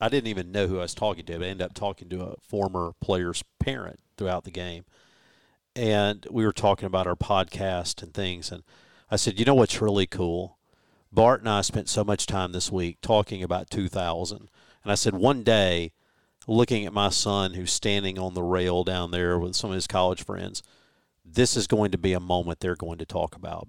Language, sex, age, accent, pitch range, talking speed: English, male, 50-69, American, 90-110 Hz, 215 wpm